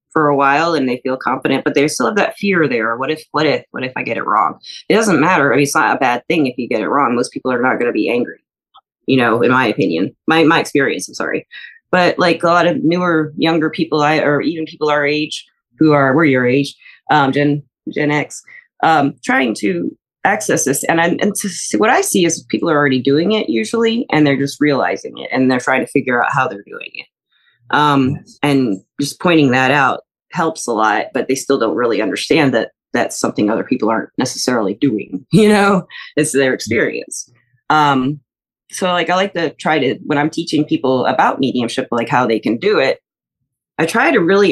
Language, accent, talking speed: English, American, 225 wpm